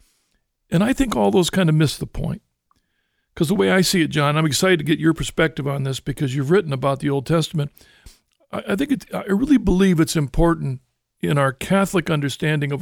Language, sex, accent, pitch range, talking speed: English, male, American, 150-190 Hz, 210 wpm